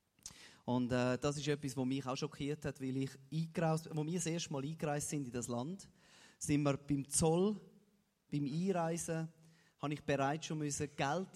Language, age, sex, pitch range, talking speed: German, 30-49, male, 140-170 Hz, 175 wpm